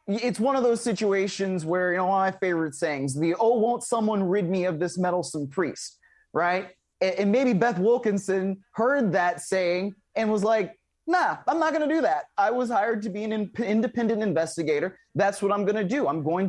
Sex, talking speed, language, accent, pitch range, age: male, 205 wpm, English, American, 185-230 Hz, 20-39